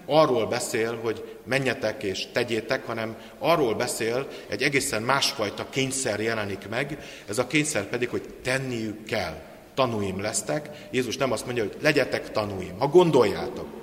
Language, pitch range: Hungarian, 105-140 Hz